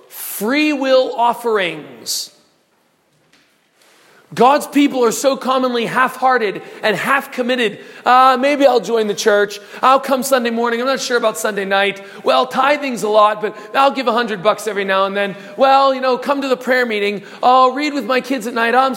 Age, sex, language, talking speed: 40-59, male, English, 175 wpm